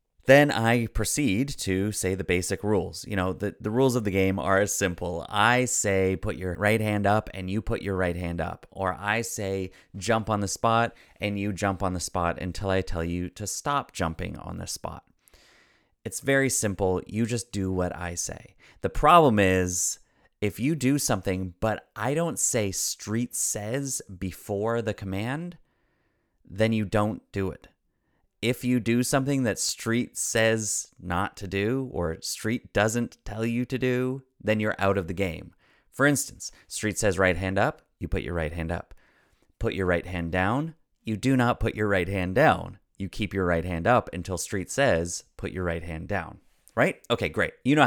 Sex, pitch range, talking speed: male, 90-115 Hz, 195 wpm